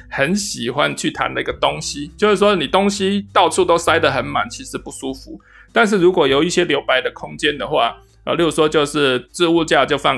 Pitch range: 140-205 Hz